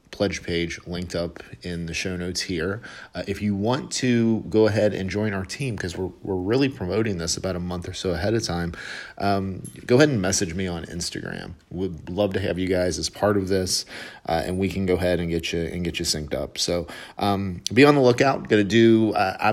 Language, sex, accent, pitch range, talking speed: English, male, American, 90-105 Hz, 235 wpm